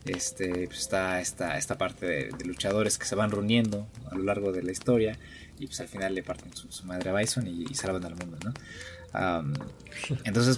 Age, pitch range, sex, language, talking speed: 20-39, 100-125 Hz, male, Spanish, 210 wpm